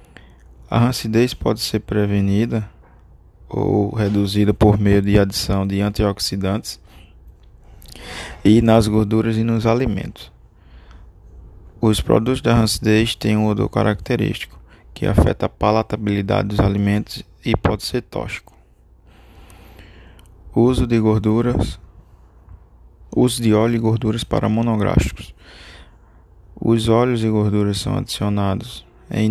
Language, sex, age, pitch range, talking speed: Portuguese, male, 20-39, 95-110 Hz, 110 wpm